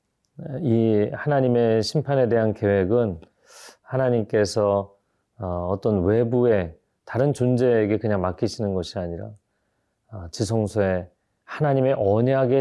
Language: Korean